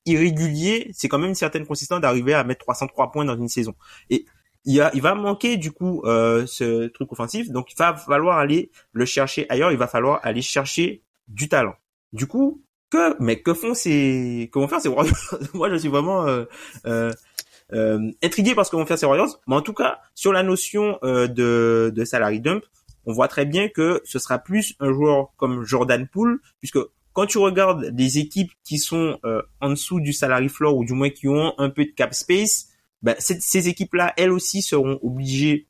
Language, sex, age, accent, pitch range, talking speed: French, male, 20-39, French, 130-185 Hz, 210 wpm